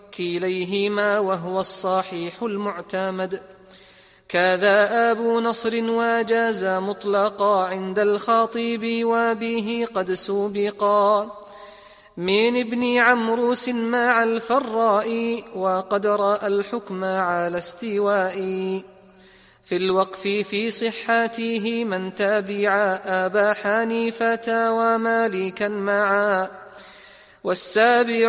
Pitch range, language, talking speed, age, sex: 190-230 Hz, Arabic, 75 wpm, 30-49, male